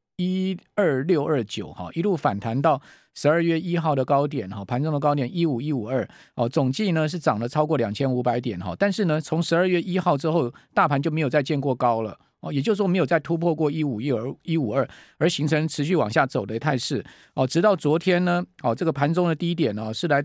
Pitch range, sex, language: 130-170 Hz, male, Chinese